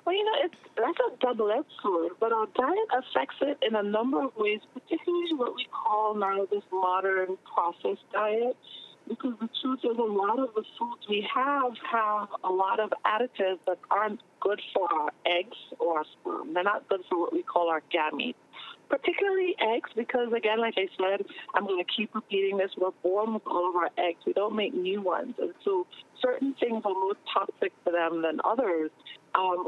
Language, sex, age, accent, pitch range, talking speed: English, female, 40-59, American, 185-265 Hz, 200 wpm